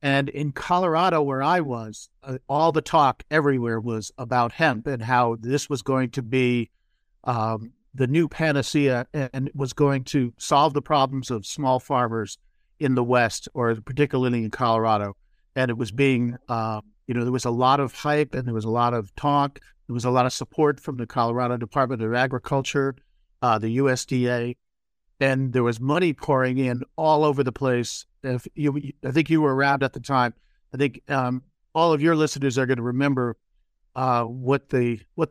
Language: English